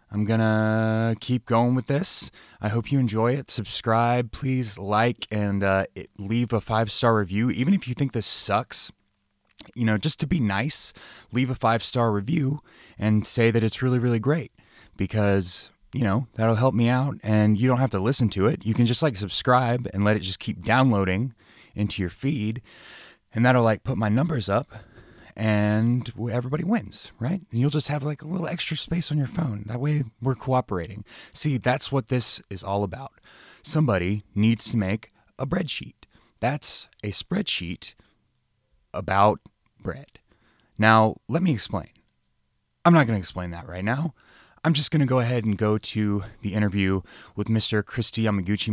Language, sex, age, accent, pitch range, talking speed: English, male, 30-49, American, 105-130 Hz, 180 wpm